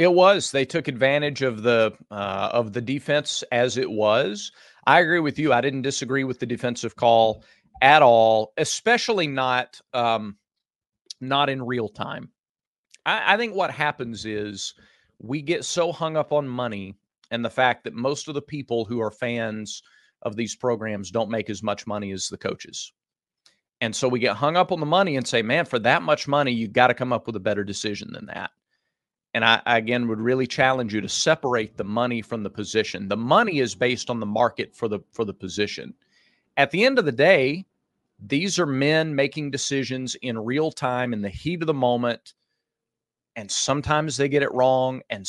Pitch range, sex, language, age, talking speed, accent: 115-145 Hz, male, English, 40-59, 200 wpm, American